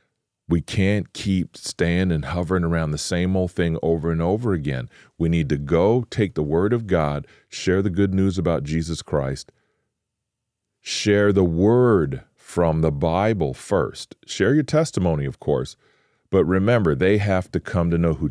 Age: 40-59